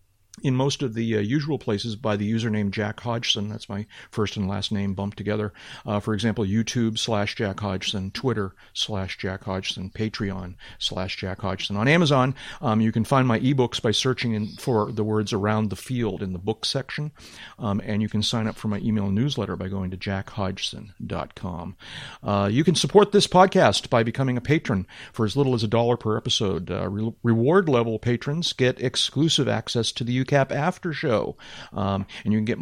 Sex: male